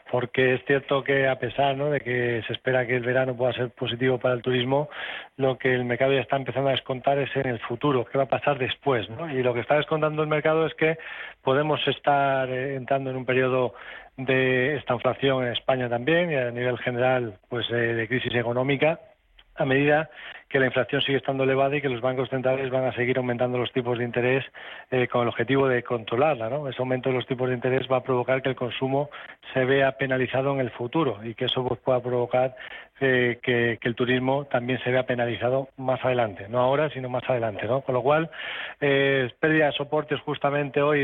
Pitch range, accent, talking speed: 125-140 Hz, Spanish, 210 wpm